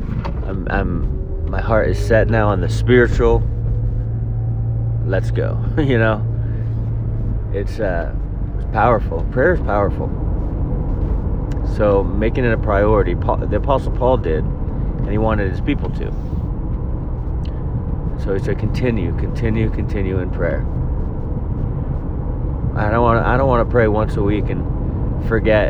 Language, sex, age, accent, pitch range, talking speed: English, male, 30-49, American, 95-115 Hz, 135 wpm